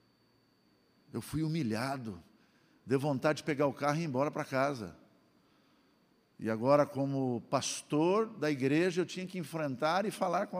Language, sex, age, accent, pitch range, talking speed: Portuguese, male, 60-79, Brazilian, 120-170 Hz, 155 wpm